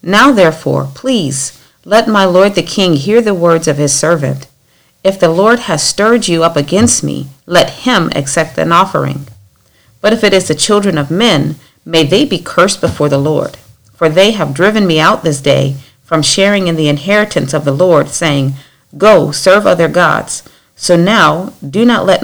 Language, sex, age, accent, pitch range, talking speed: English, female, 40-59, American, 145-195 Hz, 185 wpm